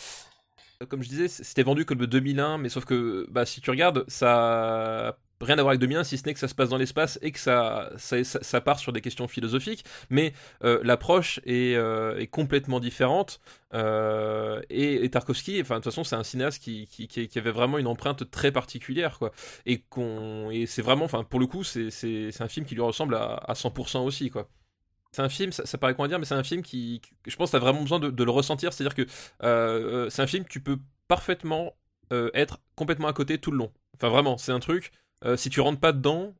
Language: French